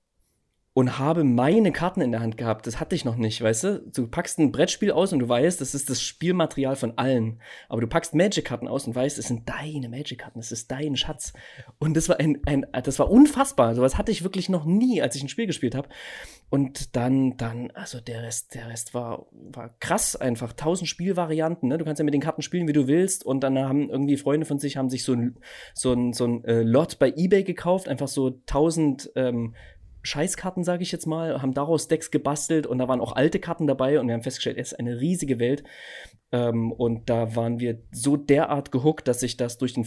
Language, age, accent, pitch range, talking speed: German, 20-39, German, 120-155 Hz, 230 wpm